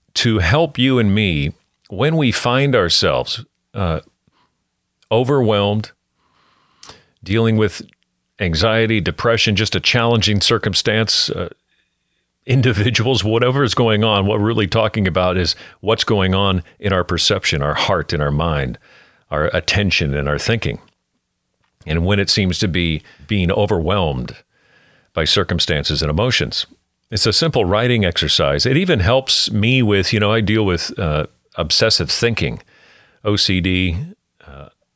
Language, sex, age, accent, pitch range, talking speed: English, male, 50-69, American, 85-115 Hz, 135 wpm